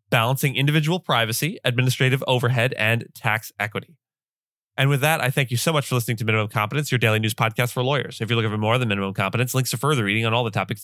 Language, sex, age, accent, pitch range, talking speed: English, male, 20-39, American, 115-150 Hz, 240 wpm